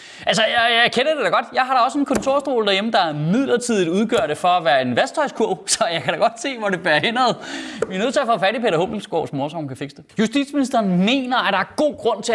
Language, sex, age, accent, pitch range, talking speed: Danish, male, 30-49, native, 190-295 Hz, 275 wpm